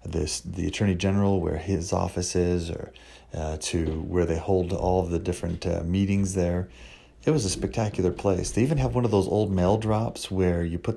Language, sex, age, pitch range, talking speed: English, male, 30-49, 85-100 Hz, 210 wpm